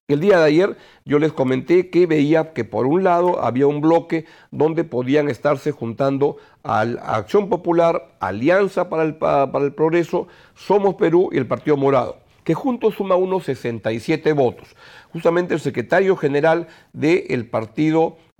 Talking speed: 150 wpm